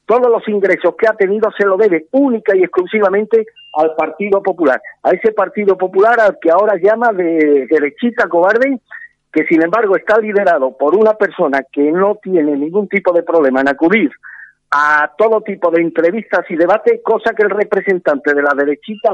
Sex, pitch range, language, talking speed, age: male, 160-215 Hz, Spanish, 180 wpm, 50-69